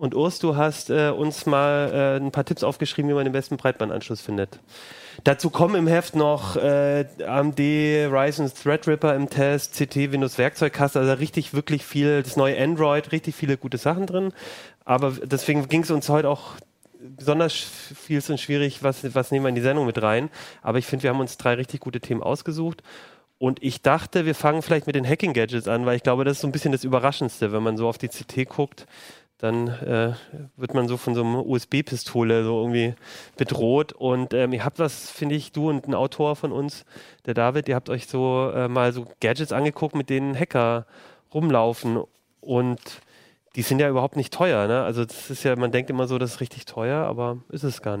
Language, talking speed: German, 205 wpm